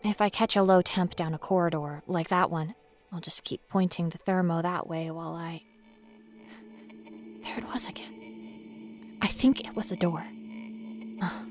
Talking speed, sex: 170 wpm, female